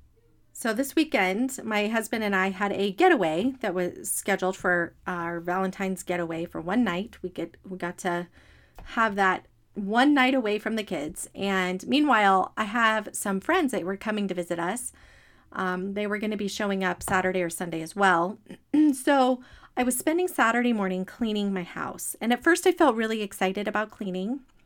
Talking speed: 185 wpm